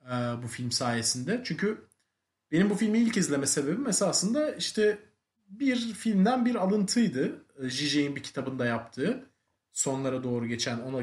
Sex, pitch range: male, 120-190 Hz